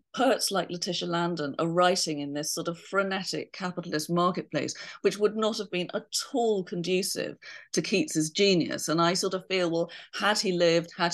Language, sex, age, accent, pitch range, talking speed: English, female, 40-59, British, 160-225 Hz, 185 wpm